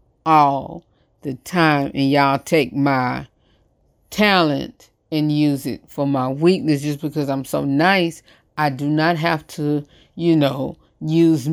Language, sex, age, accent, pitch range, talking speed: English, female, 30-49, American, 145-200 Hz, 140 wpm